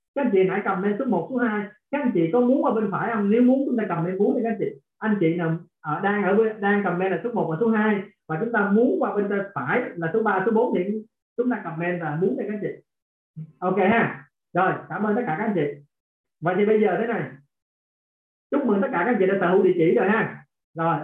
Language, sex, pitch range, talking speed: Vietnamese, male, 185-245 Hz, 260 wpm